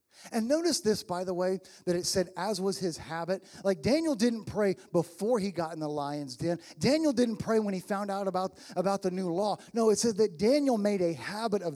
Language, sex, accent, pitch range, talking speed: English, male, American, 180-240 Hz, 230 wpm